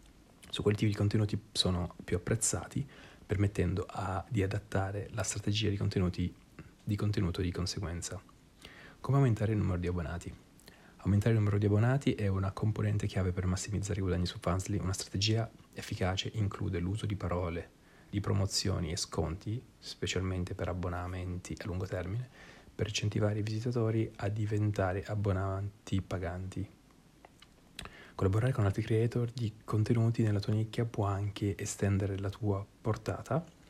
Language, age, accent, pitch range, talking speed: Italian, 30-49, native, 95-105 Hz, 140 wpm